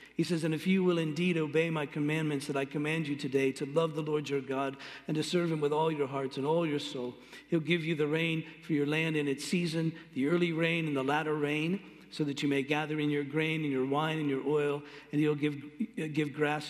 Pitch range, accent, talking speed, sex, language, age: 130-155 Hz, American, 250 wpm, male, English, 50-69